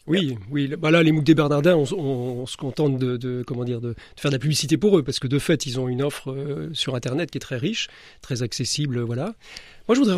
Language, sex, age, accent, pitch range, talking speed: French, male, 40-59, French, 135-180 Hz, 270 wpm